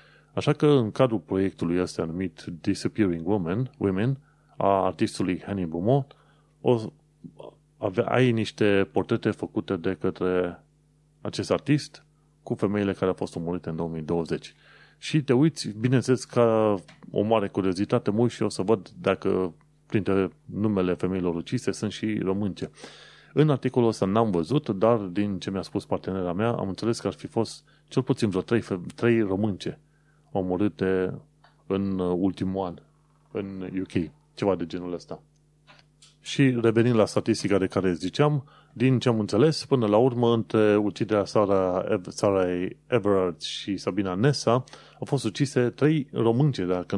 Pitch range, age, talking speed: 95-130 Hz, 30-49, 145 wpm